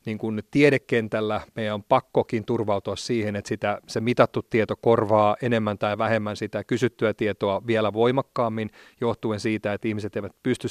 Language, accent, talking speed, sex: Finnish, native, 155 wpm, male